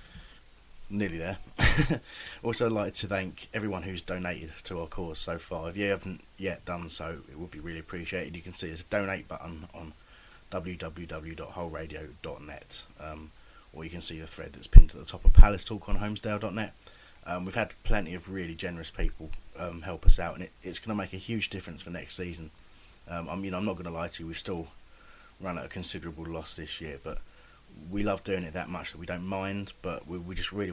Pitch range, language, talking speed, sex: 80-95 Hz, English, 215 wpm, male